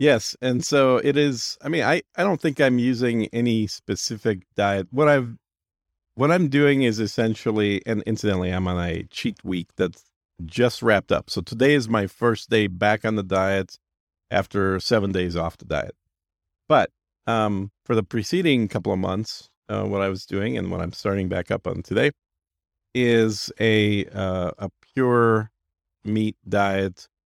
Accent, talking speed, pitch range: American, 170 wpm, 90-115 Hz